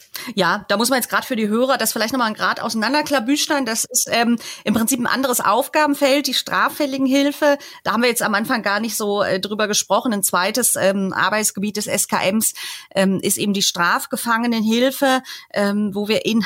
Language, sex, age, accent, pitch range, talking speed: German, female, 30-49, German, 200-250 Hz, 190 wpm